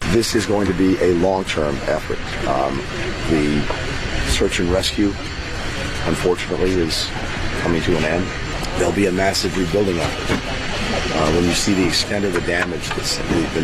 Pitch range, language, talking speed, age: 95-120 Hz, Arabic, 160 wpm, 40-59